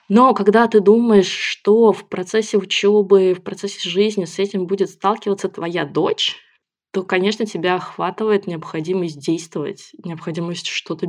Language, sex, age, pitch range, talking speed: Russian, female, 20-39, 175-210 Hz, 135 wpm